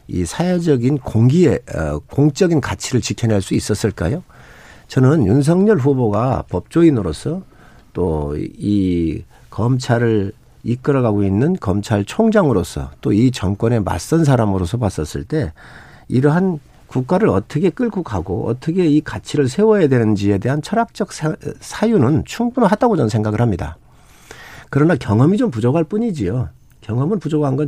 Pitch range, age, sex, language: 100-150 Hz, 50-69, male, Korean